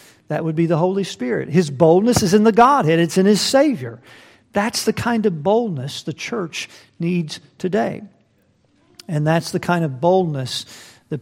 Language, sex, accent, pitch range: English, male, American, 155-215 Hz